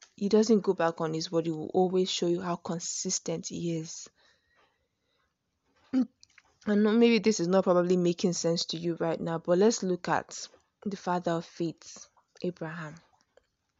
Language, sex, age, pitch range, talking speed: English, female, 20-39, 170-205 Hz, 165 wpm